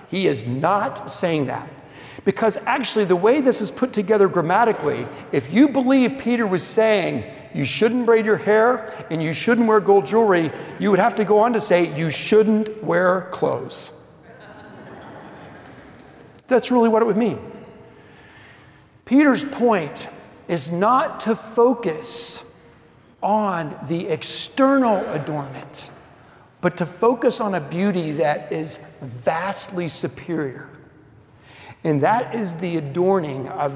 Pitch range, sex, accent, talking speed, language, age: 145-220 Hz, male, American, 135 wpm, English, 50-69